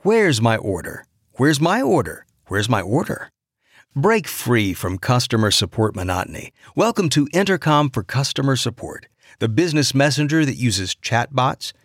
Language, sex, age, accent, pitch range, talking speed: English, male, 50-69, American, 110-145 Hz, 135 wpm